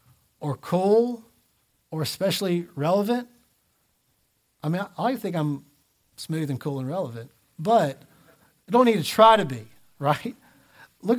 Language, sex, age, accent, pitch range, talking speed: English, male, 50-69, American, 150-220 Hz, 135 wpm